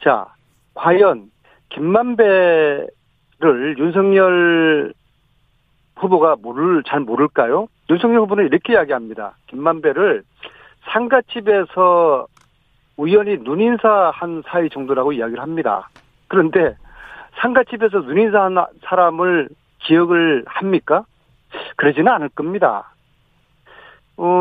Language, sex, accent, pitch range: Korean, male, native, 155-220 Hz